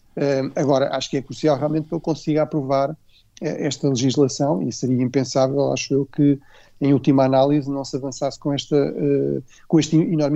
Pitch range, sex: 135-150 Hz, male